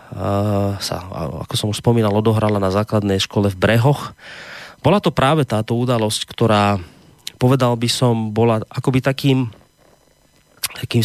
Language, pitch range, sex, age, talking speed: Slovak, 105-130 Hz, male, 30-49, 130 wpm